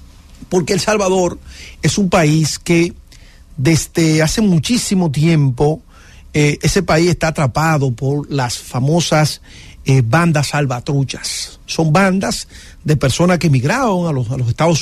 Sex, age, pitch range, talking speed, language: male, 50-69, 145-190 Hz, 130 wpm, English